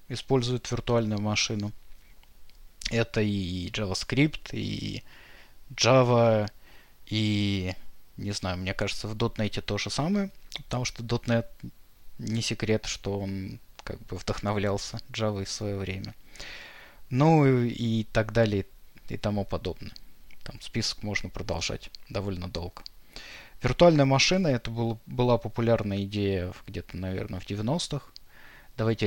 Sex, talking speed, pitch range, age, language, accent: male, 120 wpm, 100-125 Hz, 20-39, Russian, native